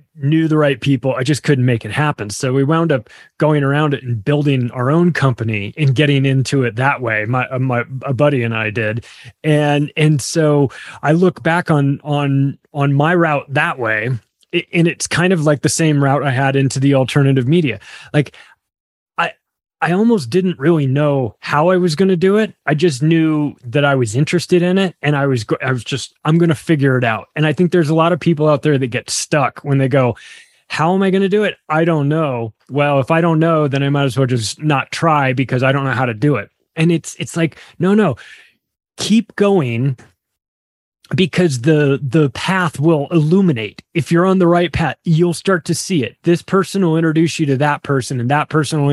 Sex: male